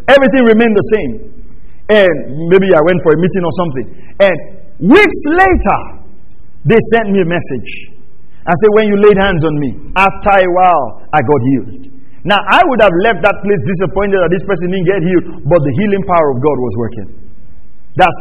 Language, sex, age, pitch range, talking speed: English, male, 50-69, 150-225 Hz, 190 wpm